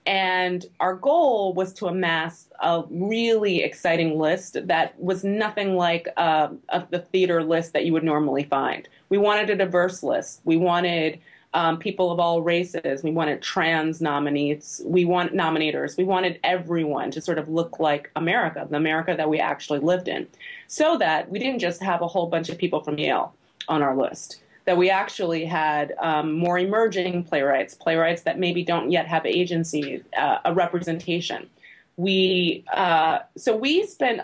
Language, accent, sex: English, American, female